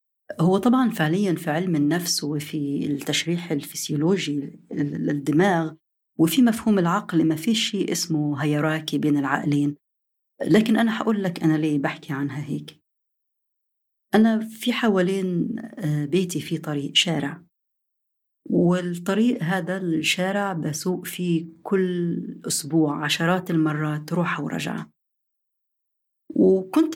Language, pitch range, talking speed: Arabic, 150-195 Hz, 105 wpm